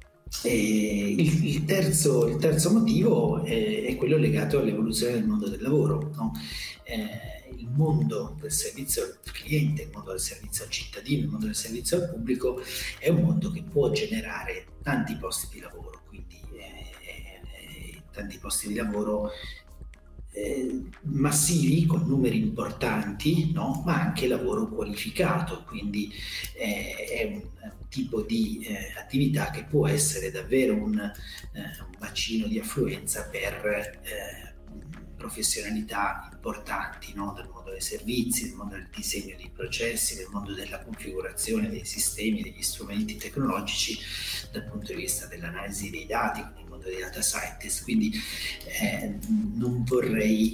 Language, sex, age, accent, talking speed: Italian, male, 40-59, native, 140 wpm